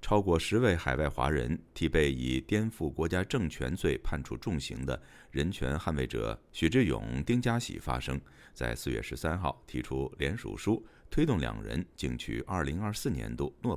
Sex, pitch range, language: male, 65-95 Hz, Chinese